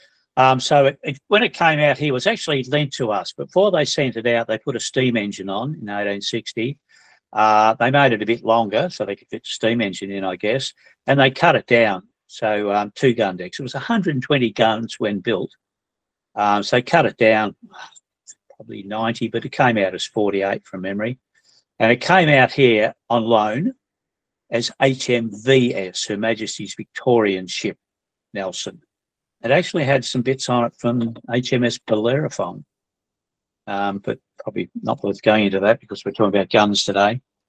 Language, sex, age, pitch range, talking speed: English, male, 60-79, 110-145 Hz, 180 wpm